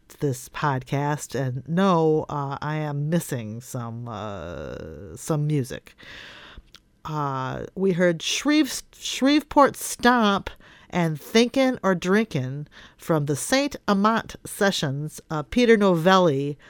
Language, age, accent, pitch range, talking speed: English, 50-69, American, 140-195 Hz, 110 wpm